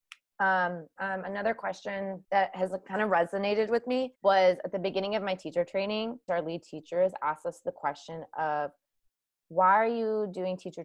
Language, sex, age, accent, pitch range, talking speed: English, female, 20-39, American, 170-210 Hz, 175 wpm